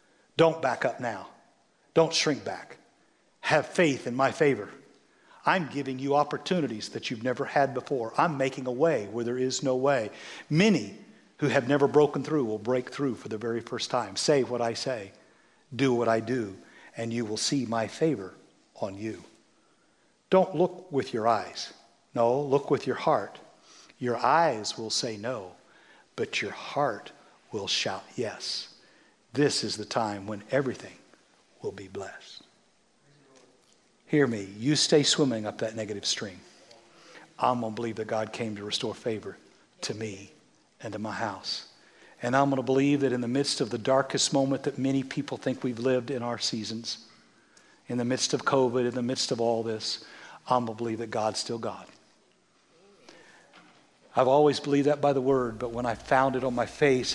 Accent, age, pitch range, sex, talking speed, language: American, 50-69, 115-140 Hz, male, 175 wpm, English